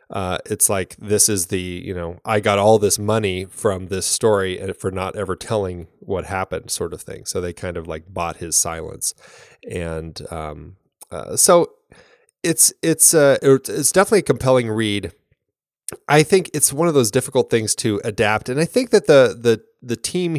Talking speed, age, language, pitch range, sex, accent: 190 wpm, 30-49, English, 95-120 Hz, male, American